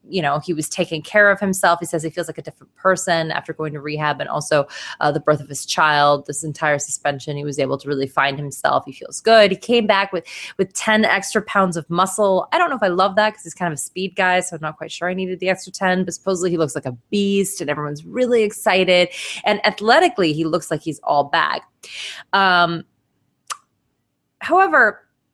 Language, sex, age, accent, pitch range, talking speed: English, female, 20-39, American, 160-215 Hz, 225 wpm